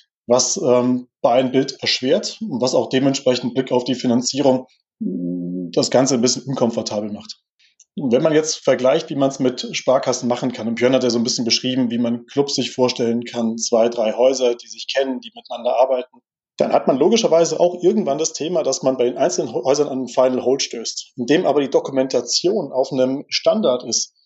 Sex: male